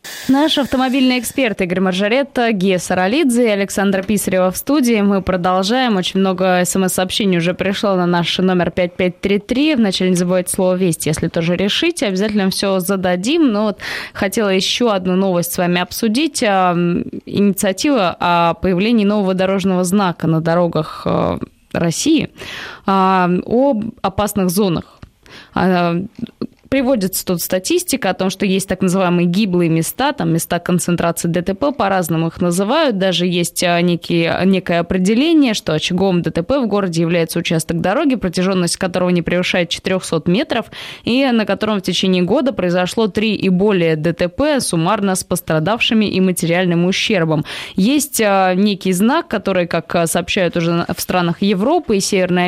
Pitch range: 175-215 Hz